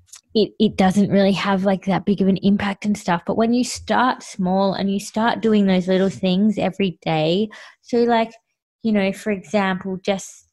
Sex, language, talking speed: female, English, 195 wpm